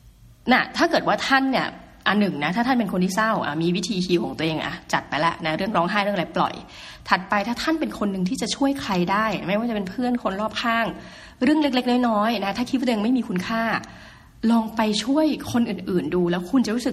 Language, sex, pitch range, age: Thai, female, 180-240 Hz, 20-39